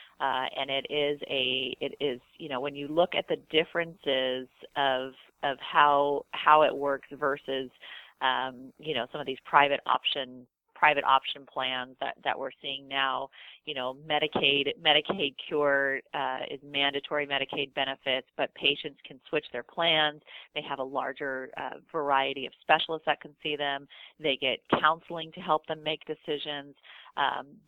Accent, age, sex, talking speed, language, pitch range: American, 30-49, female, 165 wpm, English, 135-155 Hz